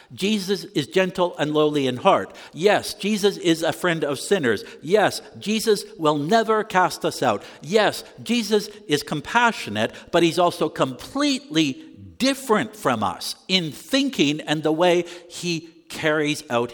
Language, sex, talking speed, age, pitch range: English, male, 145 wpm, 60-79, 155-235 Hz